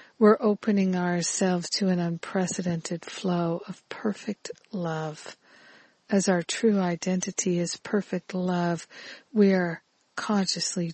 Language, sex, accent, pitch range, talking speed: English, female, American, 175-205 Hz, 110 wpm